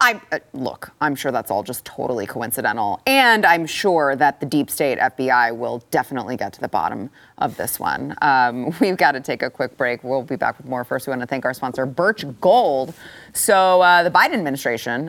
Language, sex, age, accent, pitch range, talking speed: English, female, 30-49, American, 135-195 Hz, 215 wpm